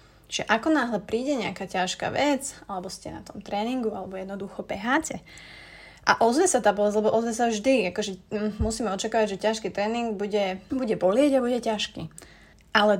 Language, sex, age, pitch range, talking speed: Slovak, female, 30-49, 185-225 Hz, 180 wpm